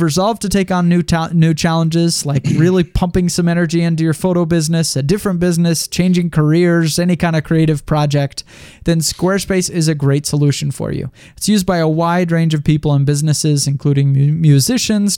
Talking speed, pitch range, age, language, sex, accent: 180 wpm, 145-180 Hz, 20-39, English, male, American